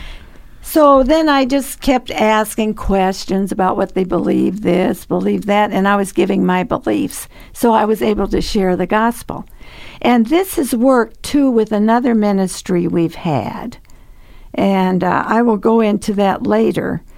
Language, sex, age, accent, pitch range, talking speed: English, female, 60-79, American, 190-235 Hz, 160 wpm